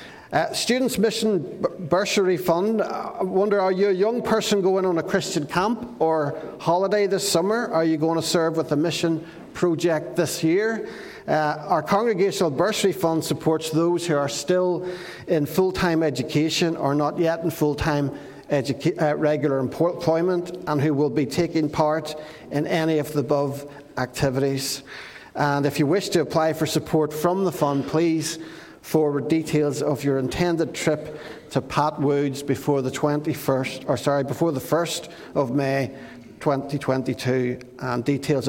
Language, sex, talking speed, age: English, male, 155 wpm, 50-69